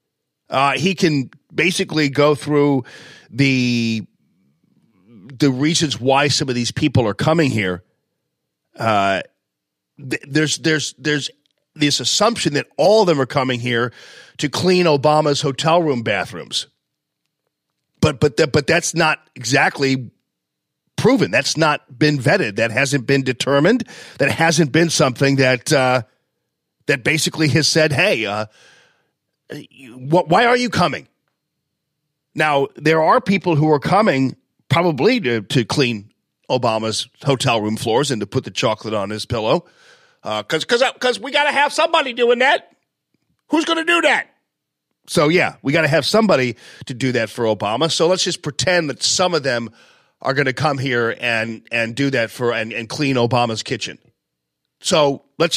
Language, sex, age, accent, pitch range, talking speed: English, male, 40-59, American, 120-160 Hz, 155 wpm